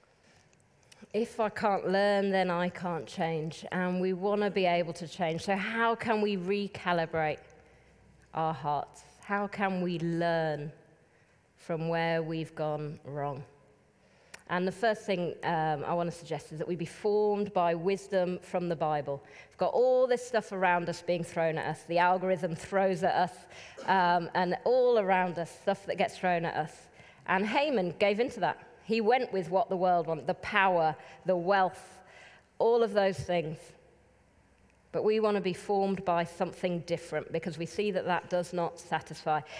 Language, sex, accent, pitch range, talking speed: English, female, British, 170-205 Hz, 175 wpm